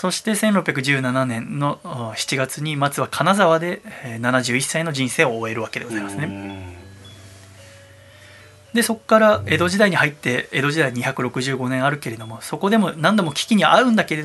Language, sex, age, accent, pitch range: Japanese, male, 20-39, native, 135-210 Hz